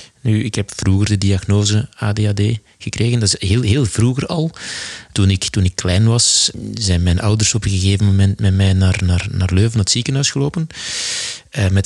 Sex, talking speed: male, 175 wpm